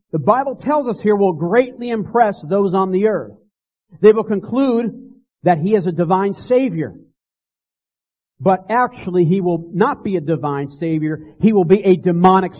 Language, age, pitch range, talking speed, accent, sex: English, 50-69, 145-200 Hz, 165 wpm, American, male